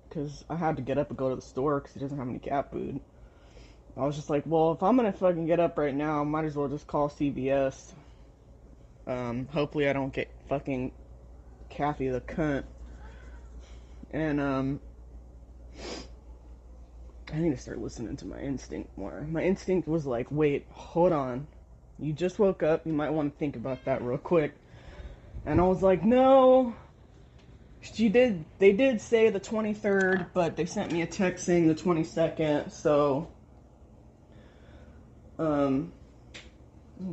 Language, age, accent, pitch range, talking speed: English, 20-39, American, 125-170 Hz, 165 wpm